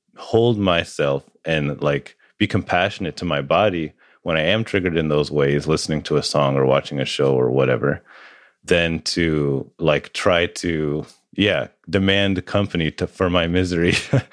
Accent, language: American, English